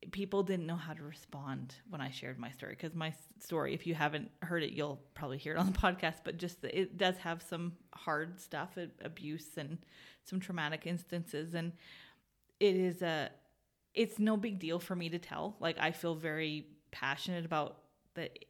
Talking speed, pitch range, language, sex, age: 190 wpm, 160-185 Hz, English, female, 30-49